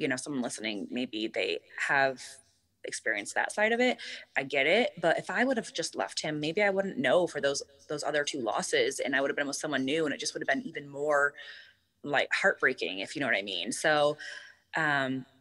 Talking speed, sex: 230 wpm, female